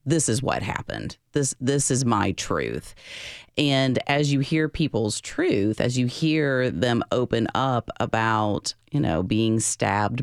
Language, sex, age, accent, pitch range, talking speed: English, female, 30-49, American, 105-140 Hz, 155 wpm